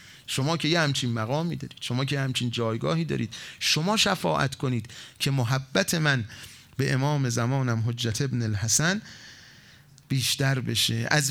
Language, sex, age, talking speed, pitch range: Persian, male, 30-49, 145 wpm, 125-170 Hz